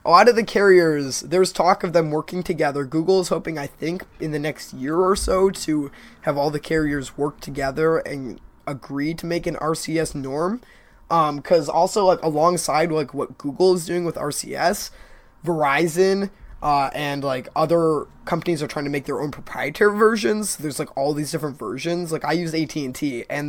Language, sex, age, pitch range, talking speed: English, male, 20-39, 145-175 Hz, 190 wpm